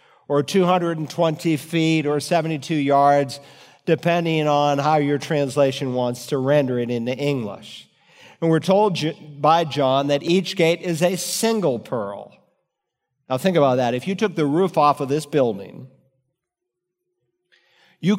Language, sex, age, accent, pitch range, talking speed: English, male, 50-69, American, 135-180 Hz, 140 wpm